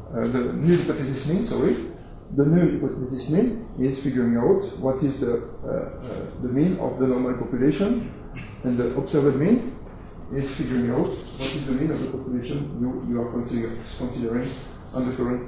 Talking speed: 180 wpm